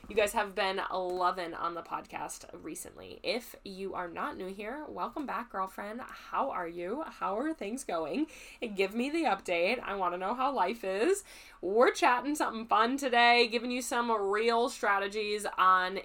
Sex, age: female, 20-39